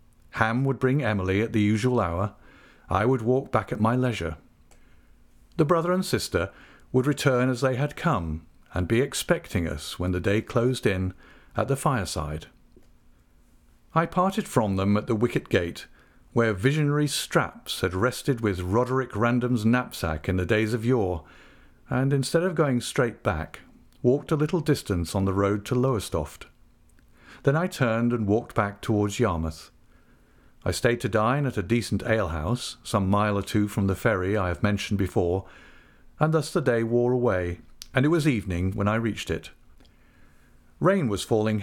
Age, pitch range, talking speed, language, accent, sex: 50-69, 95-125 Hz, 170 wpm, English, British, male